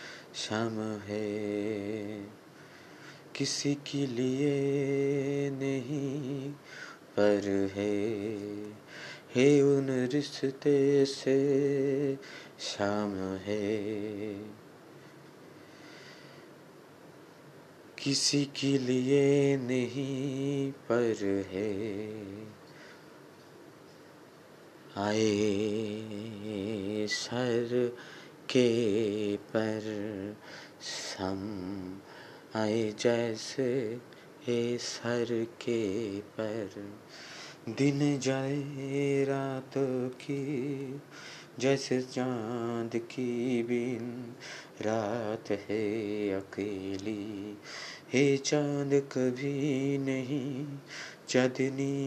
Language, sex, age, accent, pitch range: Bengali, male, 30-49, native, 105-135 Hz